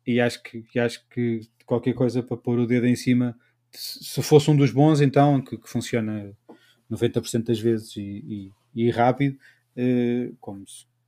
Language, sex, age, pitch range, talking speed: Portuguese, male, 20-39, 120-135 Hz, 150 wpm